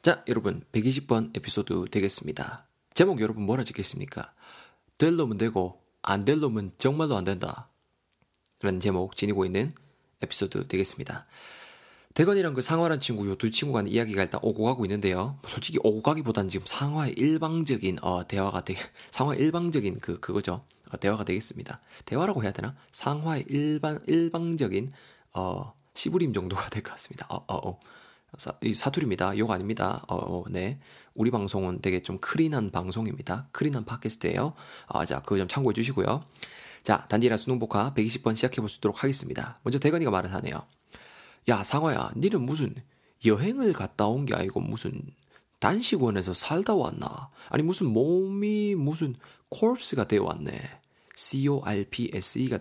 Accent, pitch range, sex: native, 100-145 Hz, male